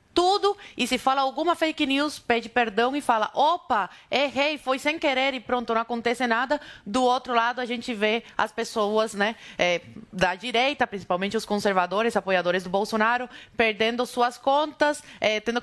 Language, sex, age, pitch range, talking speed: Portuguese, female, 20-39, 245-330 Hz, 160 wpm